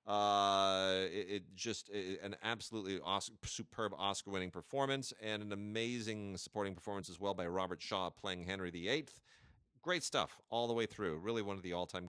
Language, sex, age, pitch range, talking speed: English, male, 30-49, 95-115 Hz, 175 wpm